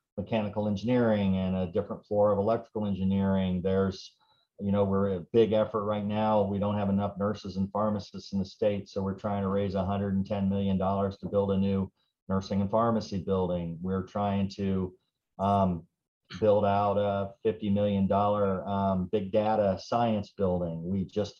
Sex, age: male, 40-59